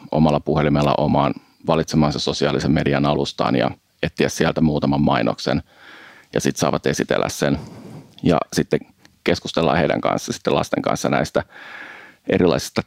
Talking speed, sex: 125 wpm, male